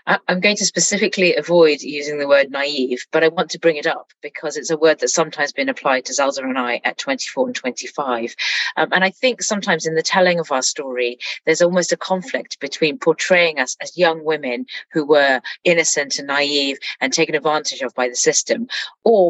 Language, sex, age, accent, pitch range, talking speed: English, female, 30-49, British, 145-180 Hz, 205 wpm